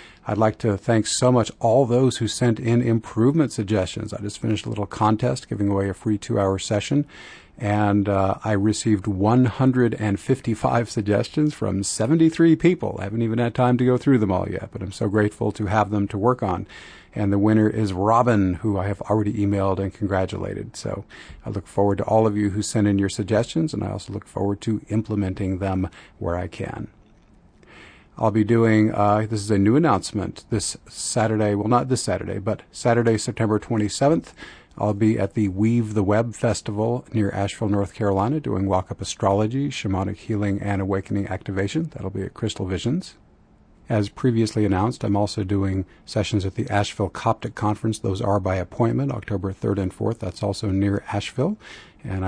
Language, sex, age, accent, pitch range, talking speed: English, male, 40-59, American, 100-115 Hz, 185 wpm